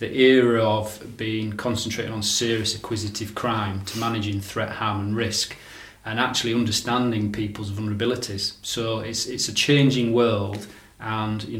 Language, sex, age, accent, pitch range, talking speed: English, male, 30-49, British, 105-120 Hz, 145 wpm